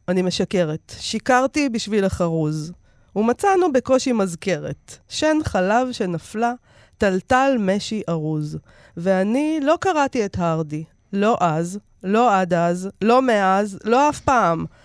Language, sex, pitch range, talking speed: Hebrew, female, 170-245 Hz, 115 wpm